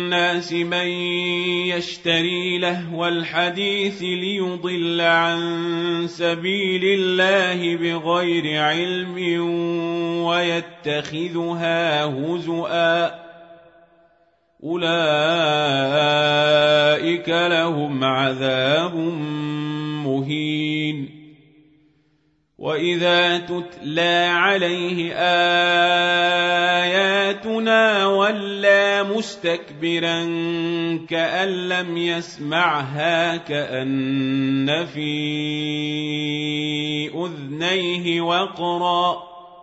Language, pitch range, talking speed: Arabic, 150-175 Hz, 45 wpm